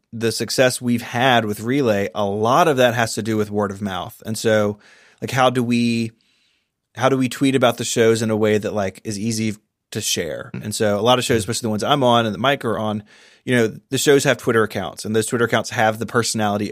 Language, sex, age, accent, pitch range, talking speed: English, male, 30-49, American, 105-125 Hz, 250 wpm